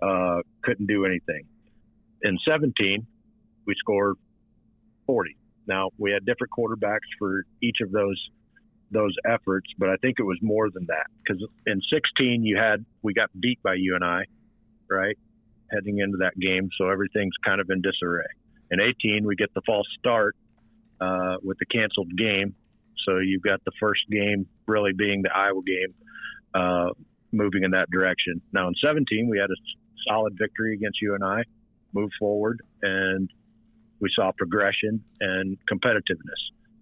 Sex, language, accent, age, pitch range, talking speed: male, English, American, 50-69, 95-110 Hz, 160 wpm